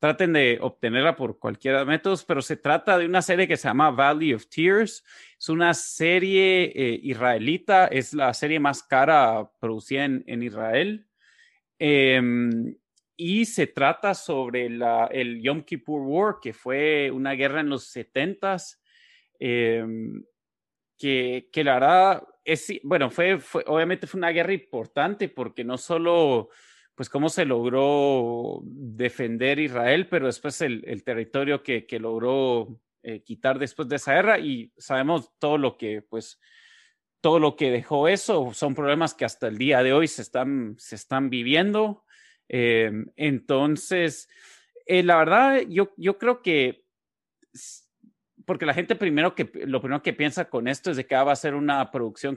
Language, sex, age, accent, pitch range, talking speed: Spanish, male, 30-49, Mexican, 125-175 Hz, 160 wpm